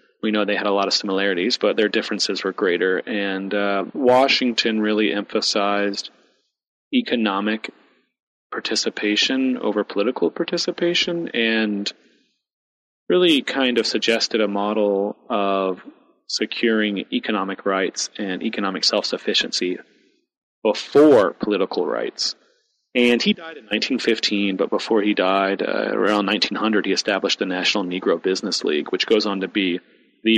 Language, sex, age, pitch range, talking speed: English, male, 30-49, 95-115 Hz, 130 wpm